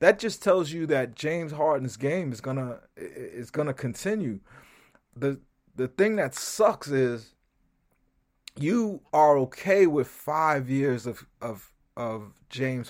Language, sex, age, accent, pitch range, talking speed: English, male, 30-49, American, 120-150 Hz, 135 wpm